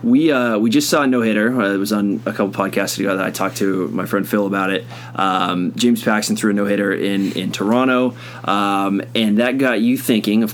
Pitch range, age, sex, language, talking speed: 100-120 Hz, 20-39, male, English, 235 wpm